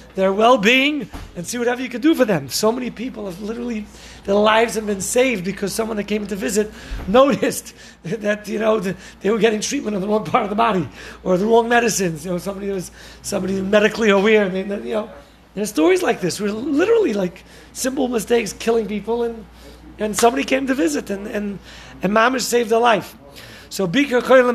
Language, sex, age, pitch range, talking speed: English, male, 40-59, 185-230 Hz, 205 wpm